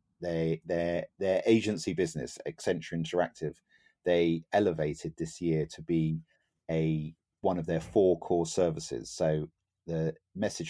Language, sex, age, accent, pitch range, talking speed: English, male, 40-59, British, 80-95 Hz, 130 wpm